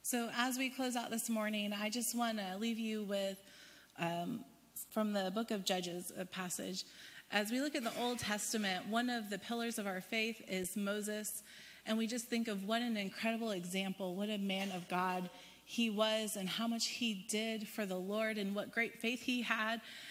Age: 30-49